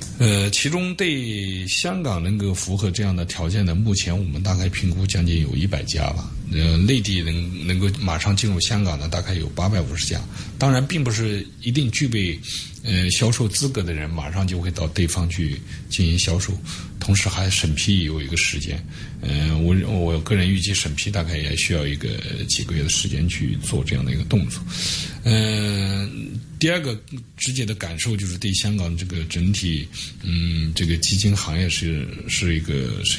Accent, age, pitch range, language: native, 50-69, 80-100 Hz, Chinese